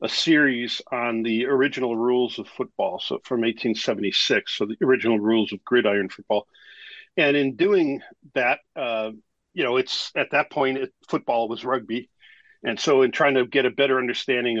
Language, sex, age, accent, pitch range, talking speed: English, male, 50-69, American, 120-155 Hz, 170 wpm